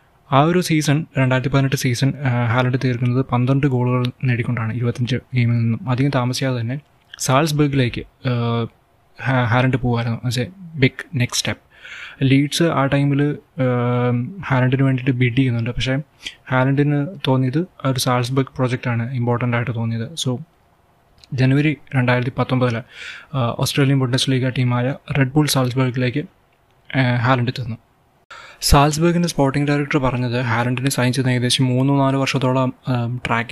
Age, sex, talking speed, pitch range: 20-39, male, 115 wpm, 125-135 Hz